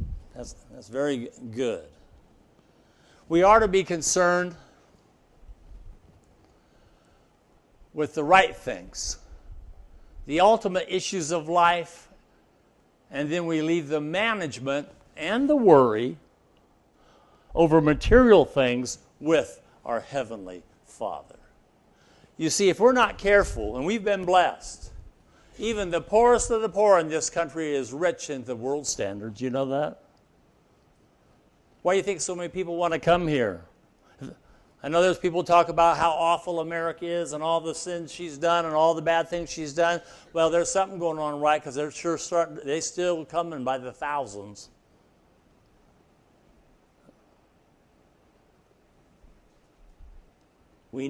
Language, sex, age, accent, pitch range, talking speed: English, male, 60-79, American, 135-175 Hz, 135 wpm